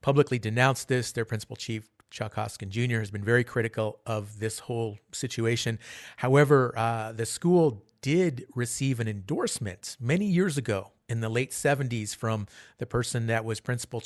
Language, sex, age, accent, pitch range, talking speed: English, male, 40-59, American, 110-130 Hz, 160 wpm